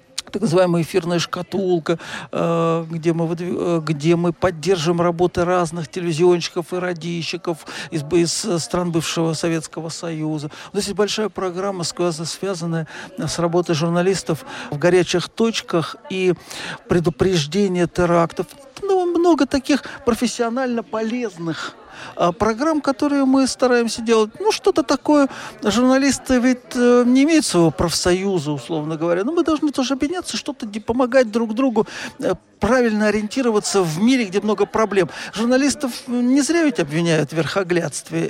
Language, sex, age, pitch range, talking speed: Russian, male, 50-69, 170-245 Hz, 120 wpm